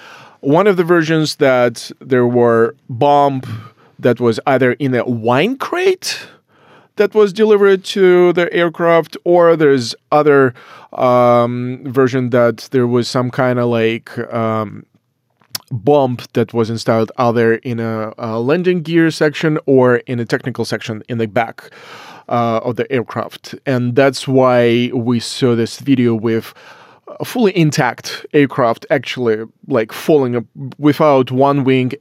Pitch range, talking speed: 120-150 Hz, 140 wpm